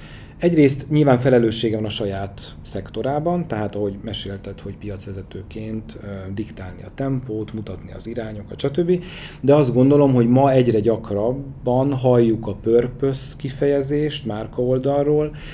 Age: 40-59